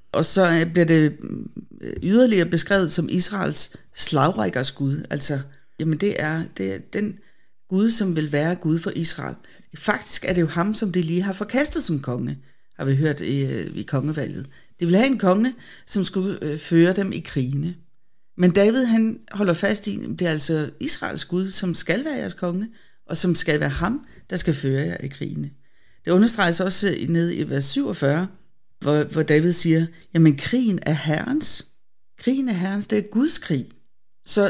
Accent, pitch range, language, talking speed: native, 155-205 Hz, Danish, 180 wpm